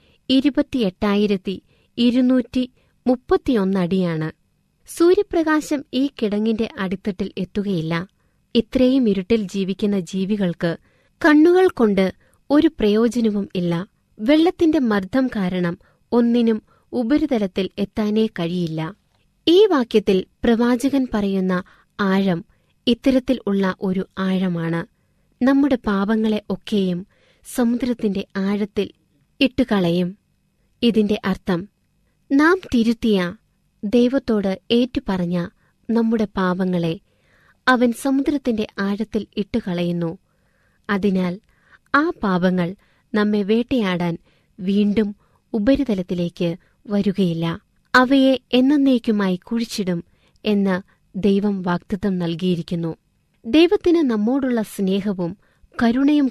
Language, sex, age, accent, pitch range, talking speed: Malayalam, female, 20-39, native, 190-245 Hz, 75 wpm